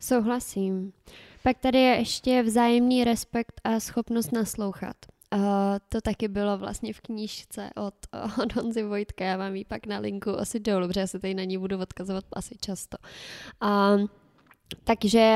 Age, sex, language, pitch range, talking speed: 20-39, female, Czech, 195-225 Hz, 160 wpm